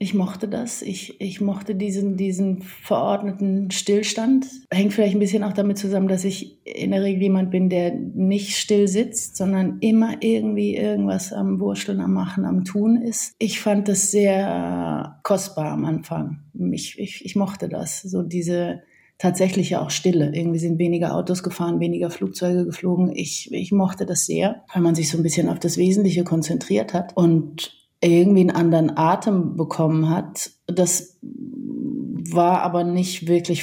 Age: 30-49